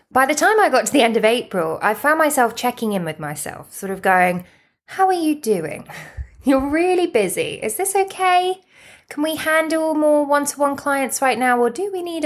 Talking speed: 205 wpm